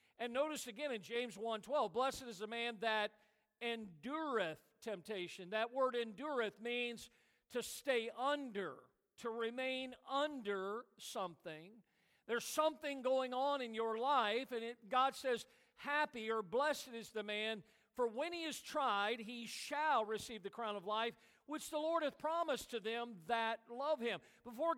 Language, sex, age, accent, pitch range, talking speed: English, male, 50-69, American, 215-255 Hz, 155 wpm